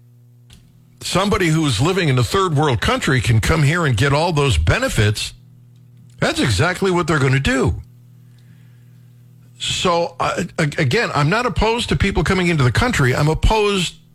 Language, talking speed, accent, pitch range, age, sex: English, 155 wpm, American, 125-165 Hz, 60-79, male